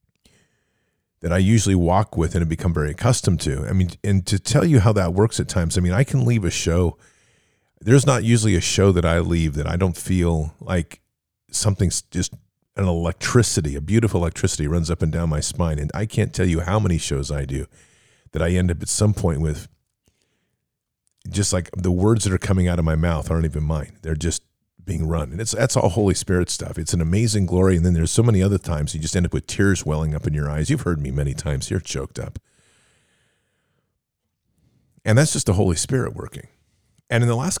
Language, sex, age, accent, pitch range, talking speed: English, male, 40-59, American, 85-110 Hz, 220 wpm